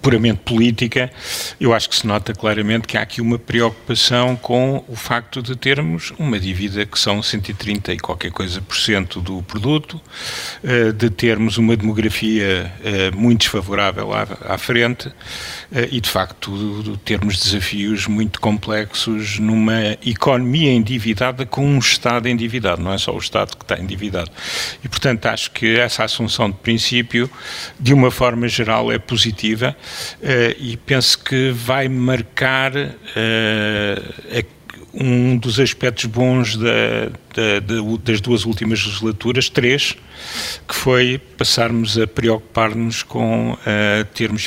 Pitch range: 105-125 Hz